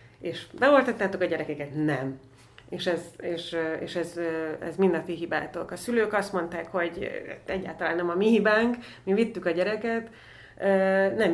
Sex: female